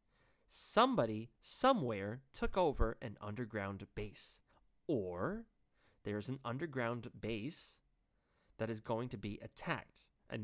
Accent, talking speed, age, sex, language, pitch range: American, 115 wpm, 30-49, male, English, 110-170 Hz